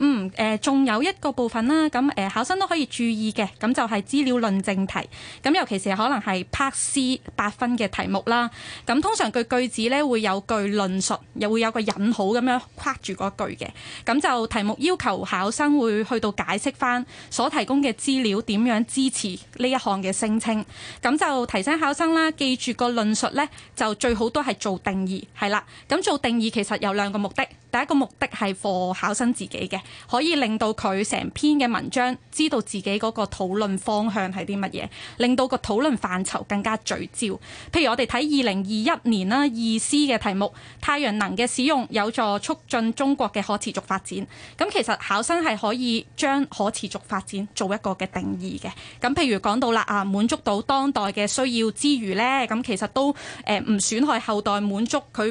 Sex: female